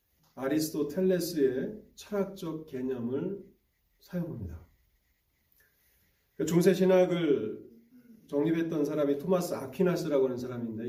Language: Korean